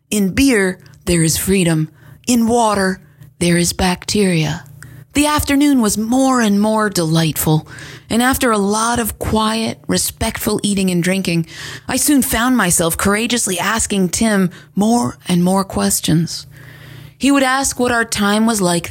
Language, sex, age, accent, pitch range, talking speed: English, female, 30-49, American, 155-235 Hz, 145 wpm